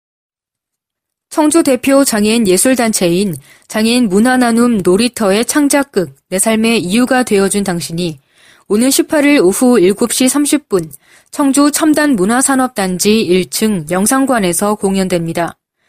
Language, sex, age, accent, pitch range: Korean, female, 20-39, native, 190-260 Hz